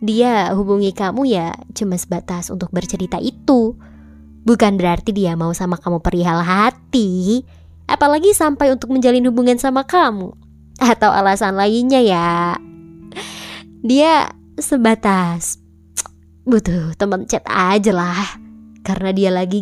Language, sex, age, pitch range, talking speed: Indonesian, male, 20-39, 185-245 Hz, 115 wpm